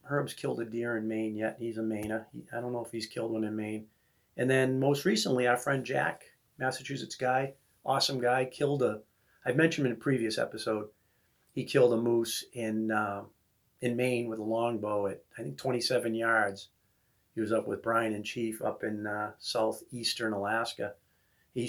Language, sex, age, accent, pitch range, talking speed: English, male, 40-59, American, 110-130 Hz, 190 wpm